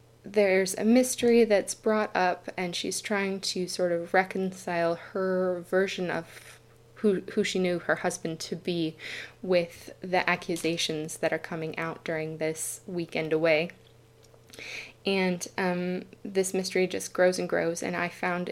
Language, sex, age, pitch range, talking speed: English, female, 20-39, 165-195 Hz, 150 wpm